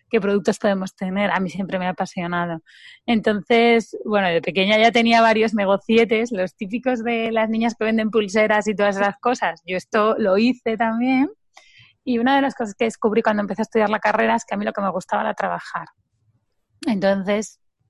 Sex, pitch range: female, 190-230 Hz